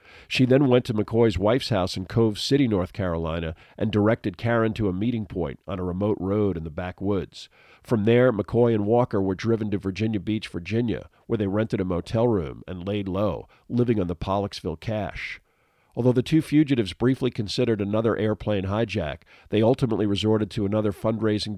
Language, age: English, 50-69